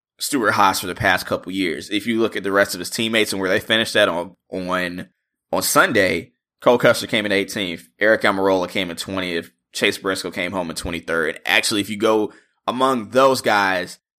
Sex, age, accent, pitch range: male, 20-39, American, 100-130 Hz